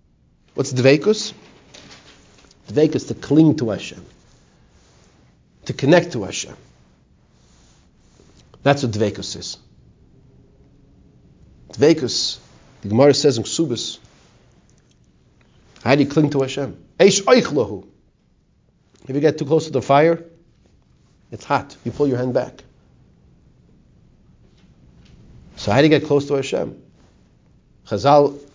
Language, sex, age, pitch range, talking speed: English, male, 50-69, 115-165 Hz, 110 wpm